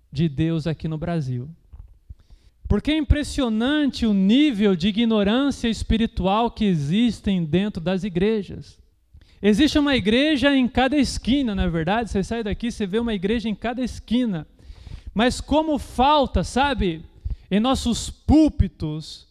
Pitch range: 190-250 Hz